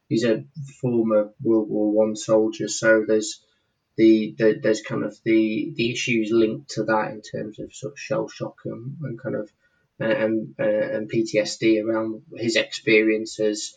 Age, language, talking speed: 20-39, English, 170 wpm